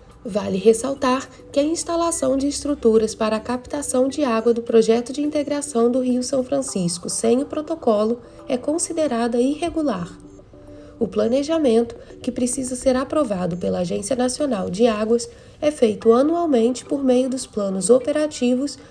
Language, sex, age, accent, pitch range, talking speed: Portuguese, female, 20-39, Brazilian, 220-285 Hz, 145 wpm